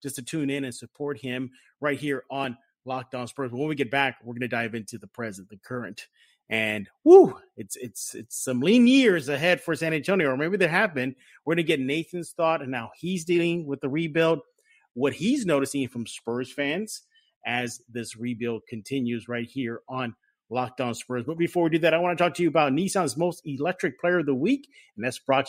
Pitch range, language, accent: 120-165 Hz, English, American